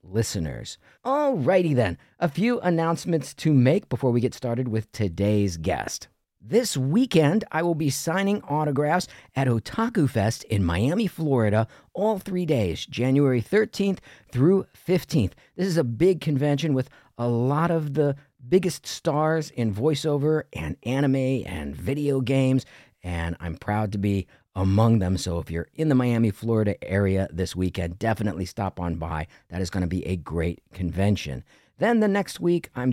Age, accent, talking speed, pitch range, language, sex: 50-69, American, 160 wpm, 95-155 Hz, English, male